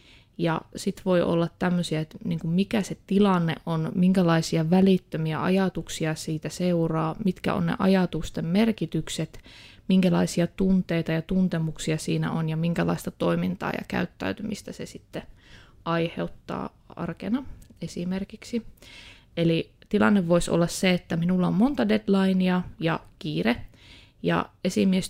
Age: 20-39